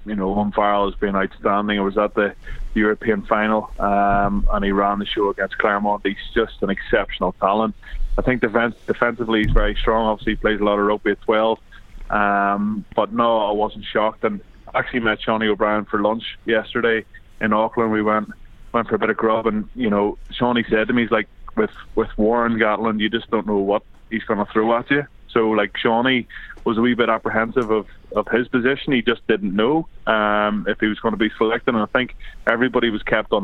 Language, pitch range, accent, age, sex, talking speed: English, 105-115 Hz, Irish, 20-39, male, 215 wpm